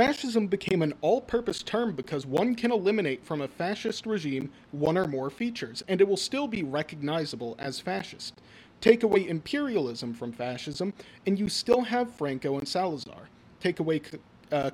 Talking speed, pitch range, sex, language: 165 wpm, 140-200 Hz, male, English